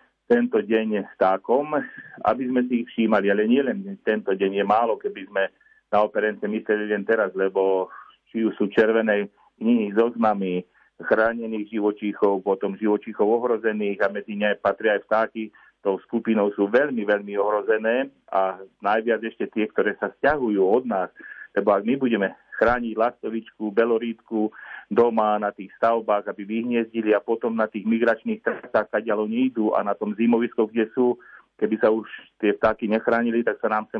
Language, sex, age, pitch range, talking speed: Slovak, male, 40-59, 105-115 Hz, 160 wpm